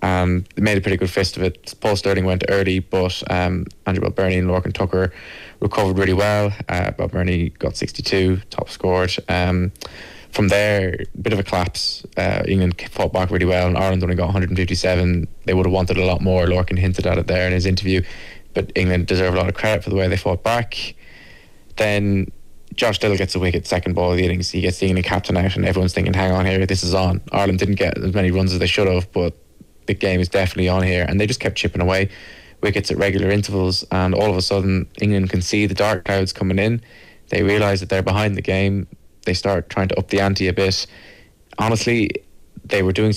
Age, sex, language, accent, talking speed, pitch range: 20-39, male, English, British, 225 wpm, 90-100 Hz